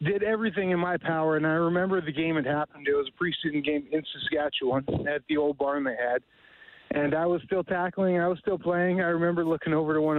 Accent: American